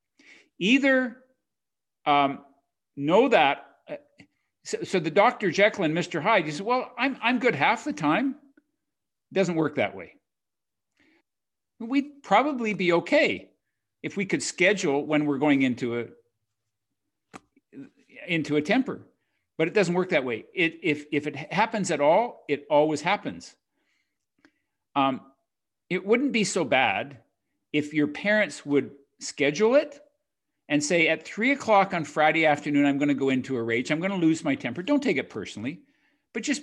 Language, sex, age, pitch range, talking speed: English, male, 50-69, 145-225 Hz, 160 wpm